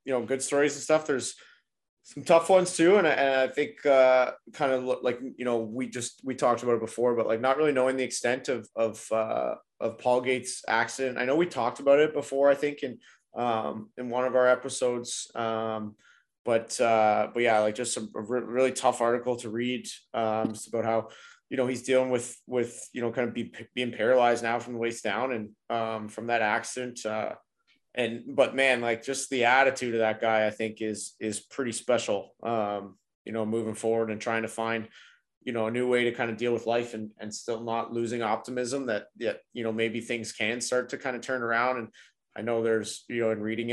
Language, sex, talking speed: English, male, 225 wpm